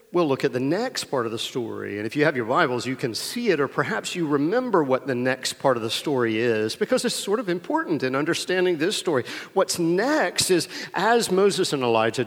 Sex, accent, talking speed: male, American, 230 wpm